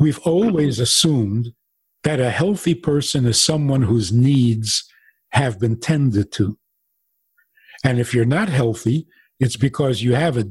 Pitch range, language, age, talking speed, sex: 120-155 Hz, English, 50-69, 145 wpm, male